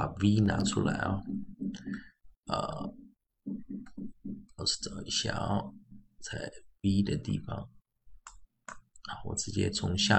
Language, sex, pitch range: Chinese, male, 85-135 Hz